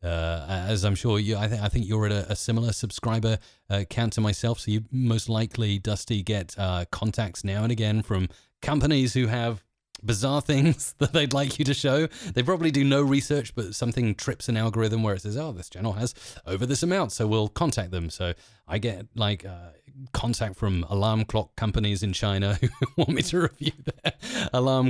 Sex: male